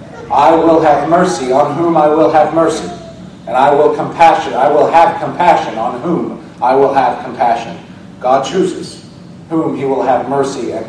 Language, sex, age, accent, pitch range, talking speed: English, male, 40-59, American, 125-165 Hz, 175 wpm